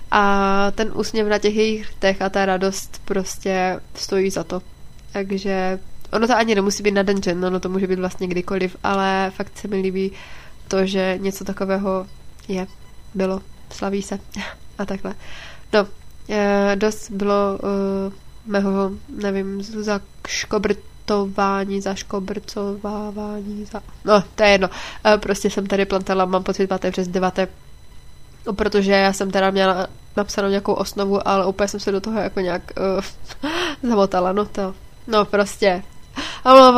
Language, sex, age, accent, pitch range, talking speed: Czech, female, 20-39, native, 195-210 Hz, 145 wpm